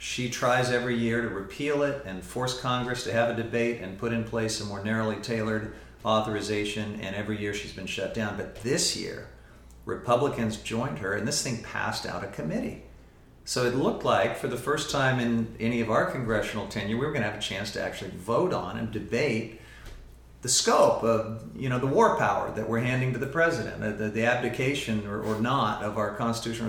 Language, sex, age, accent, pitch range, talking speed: English, male, 50-69, American, 110-135 Hz, 210 wpm